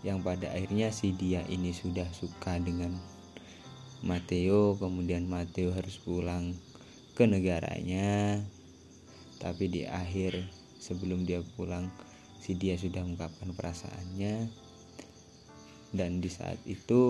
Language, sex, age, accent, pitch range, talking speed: Indonesian, male, 20-39, native, 90-105 Hz, 105 wpm